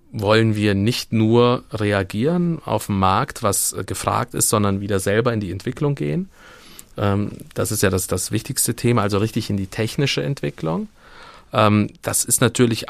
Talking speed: 160 wpm